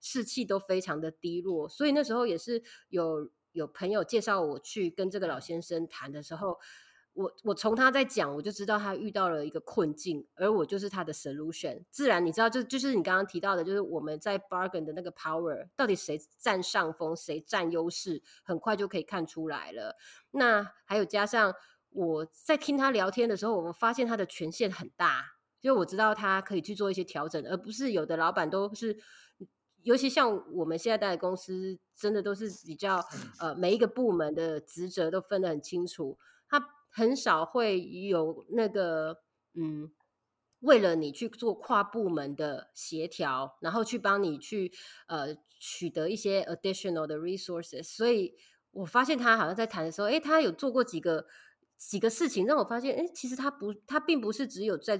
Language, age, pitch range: Chinese, 20-39, 165-225 Hz